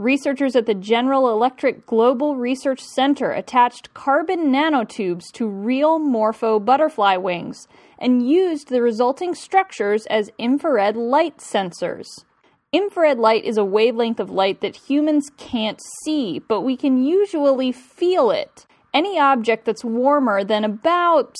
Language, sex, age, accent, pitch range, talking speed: English, female, 10-29, American, 215-290 Hz, 135 wpm